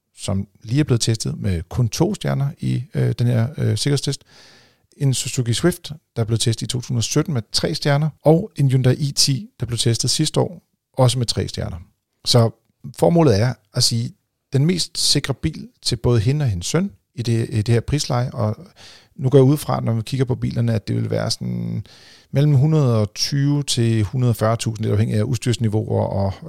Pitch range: 110-135 Hz